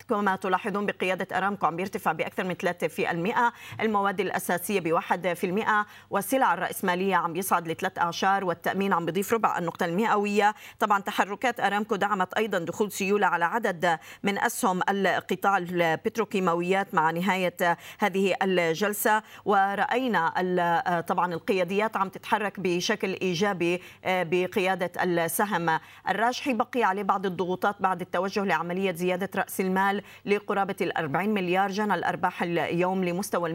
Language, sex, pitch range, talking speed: Arabic, female, 175-210 Hz, 130 wpm